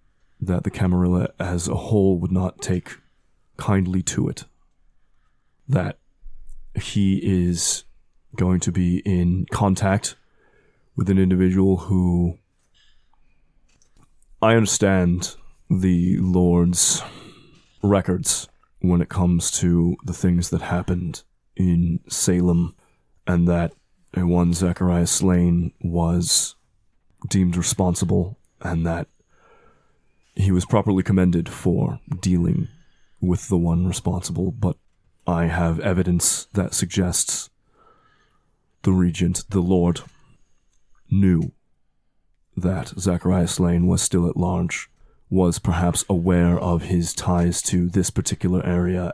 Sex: male